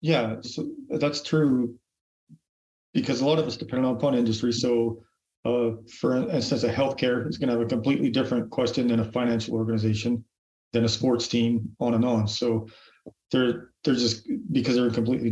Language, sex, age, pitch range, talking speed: English, male, 40-59, 110-120 Hz, 175 wpm